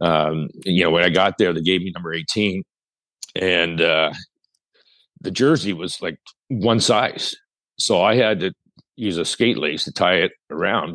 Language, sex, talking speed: English, male, 175 wpm